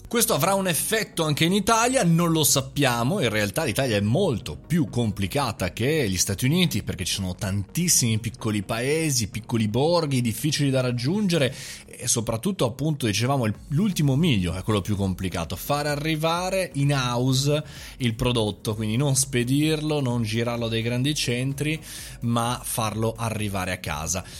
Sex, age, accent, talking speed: male, 30-49, native, 150 wpm